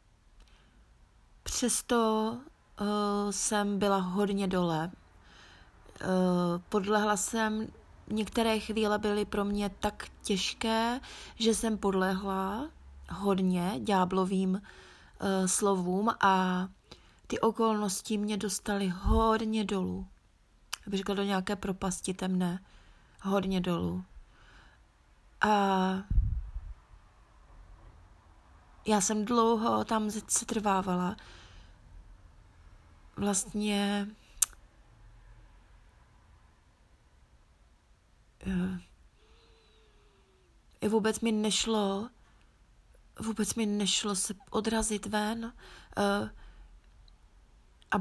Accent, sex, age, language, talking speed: native, female, 30-49, Czech, 65 wpm